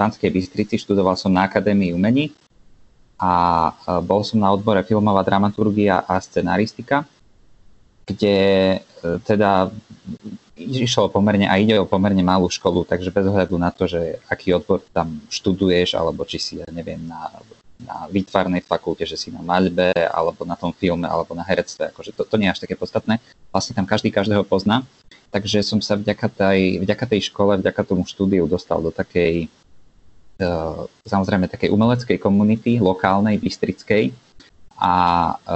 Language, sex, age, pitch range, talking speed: Slovak, male, 20-39, 90-105 Hz, 150 wpm